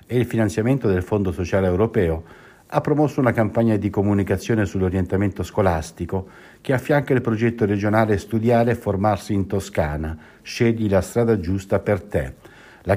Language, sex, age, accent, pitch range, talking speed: Italian, male, 60-79, native, 90-115 Hz, 150 wpm